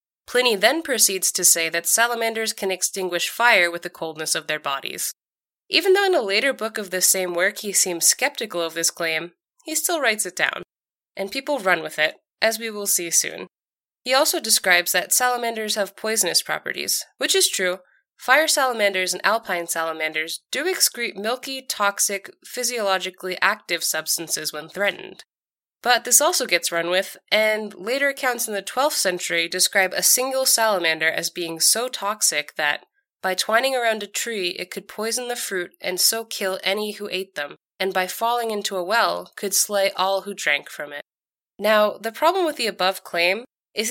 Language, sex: English, female